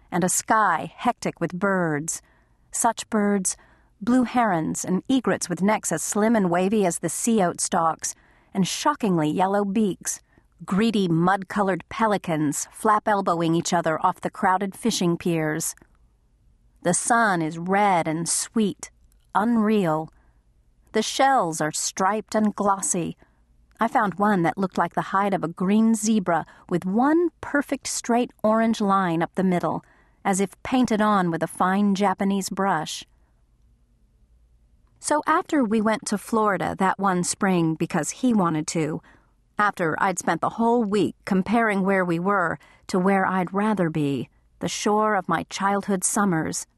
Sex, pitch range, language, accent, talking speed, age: female, 160-215 Hz, English, American, 150 wpm, 40-59